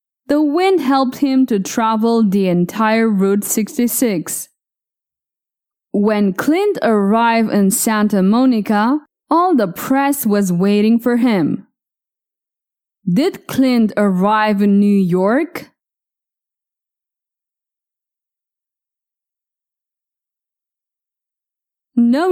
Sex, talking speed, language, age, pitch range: female, 80 wpm, English, 20-39, 205-275 Hz